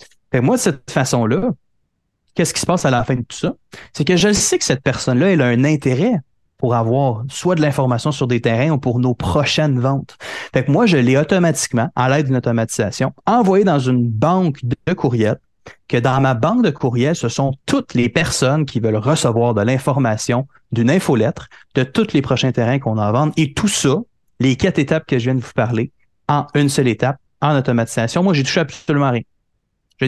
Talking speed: 210 wpm